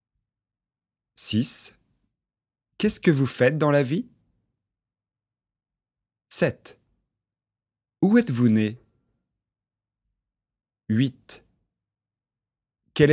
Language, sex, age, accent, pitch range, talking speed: French, male, 30-49, French, 110-140 Hz, 65 wpm